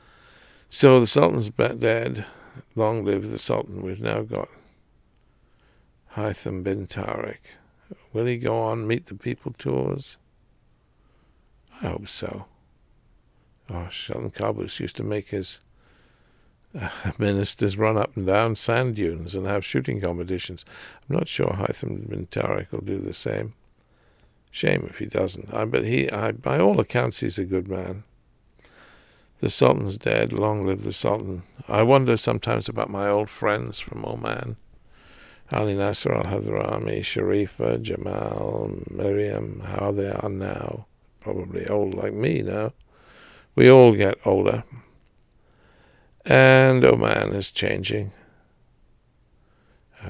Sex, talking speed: male, 130 wpm